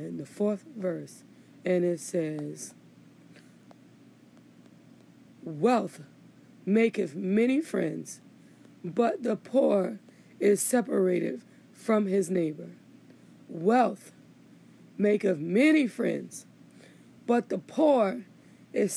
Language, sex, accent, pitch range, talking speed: English, female, American, 215-265 Hz, 85 wpm